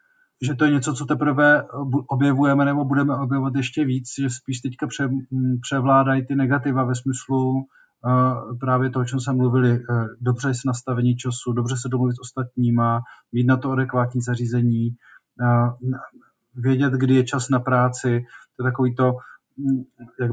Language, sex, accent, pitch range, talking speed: Czech, male, native, 125-135 Hz, 160 wpm